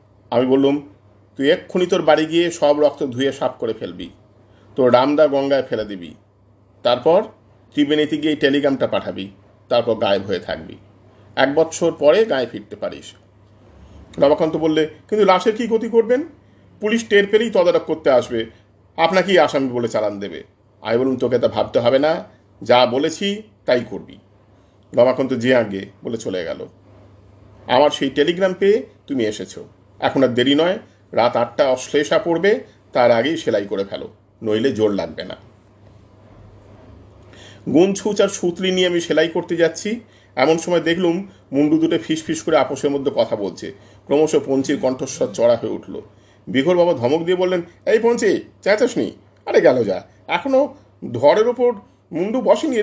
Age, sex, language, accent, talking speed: 50-69, male, Hindi, native, 115 wpm